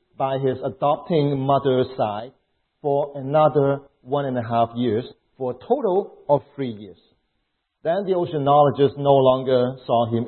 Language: English